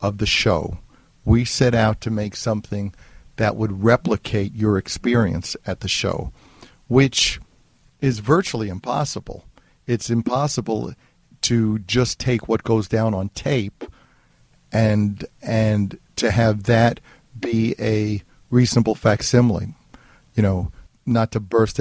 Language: English